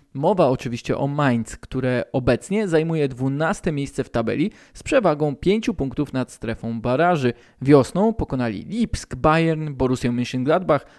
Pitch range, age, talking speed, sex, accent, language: 125-180 Hz, 20-39, 130 wpm, male, native, Polish